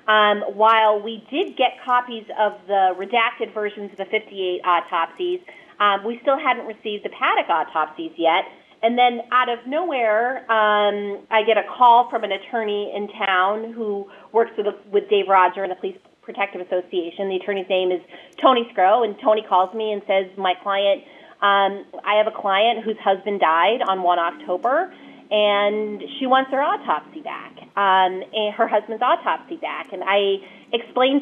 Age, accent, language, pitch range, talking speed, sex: 30-49, American, English, 195-230 Hz, 175 wpm, female